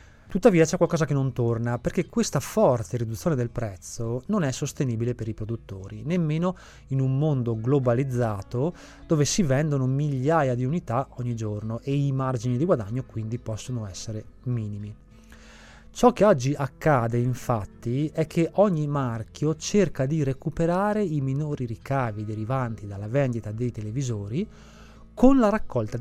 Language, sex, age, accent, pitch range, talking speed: Italian, male, 30-49, native, 120-160 Hz, 145 wpm